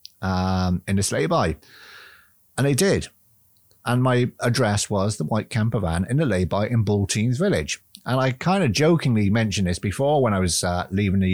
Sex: male